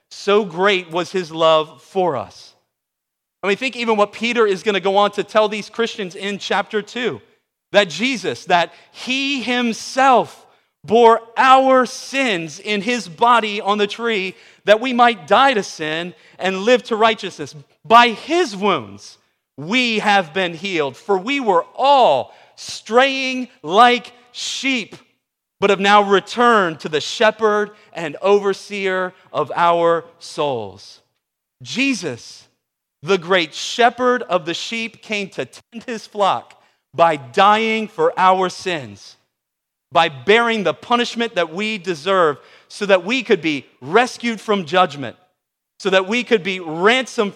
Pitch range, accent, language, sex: 185-235 Hz, American, English, male